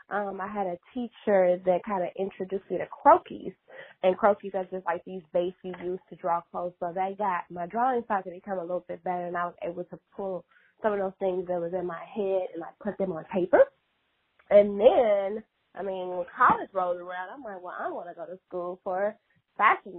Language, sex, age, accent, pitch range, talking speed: English, female, 20-39, American, 180-205 Hz, 225 wpm